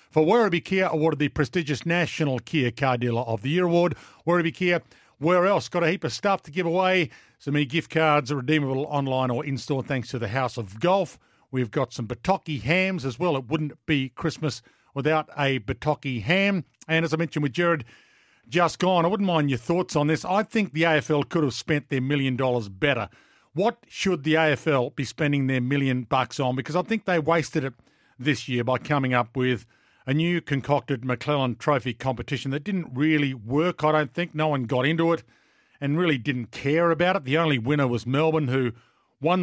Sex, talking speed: male, 205 wpm